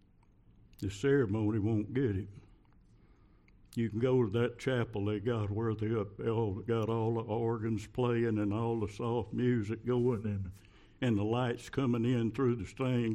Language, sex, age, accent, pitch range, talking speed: English, male, 60-79, American, 105-125 Hz, 160 wpm